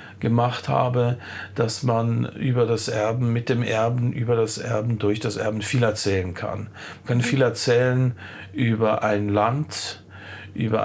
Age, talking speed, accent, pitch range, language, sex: 50-69, 150 wpm, German, 105-125 Hz, German, male